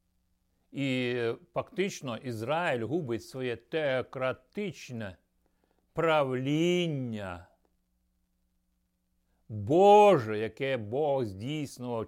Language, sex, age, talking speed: Ukrainian, male, 60-79, 55 wpm